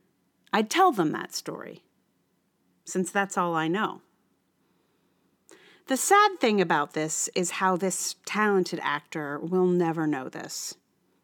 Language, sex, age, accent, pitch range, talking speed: English, female, 40-59, American, 175-265 Hz, 130 wpm